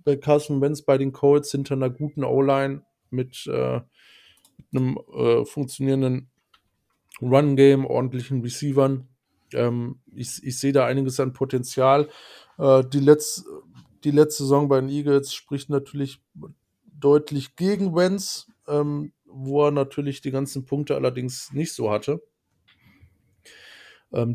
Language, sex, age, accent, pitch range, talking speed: German, male, 20-39, German, 115-140 Hz, 130 wpm